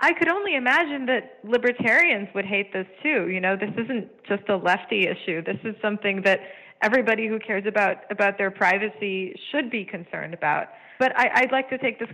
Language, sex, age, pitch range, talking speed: English, female, 20-39, 185-225 Hz, 195 wpm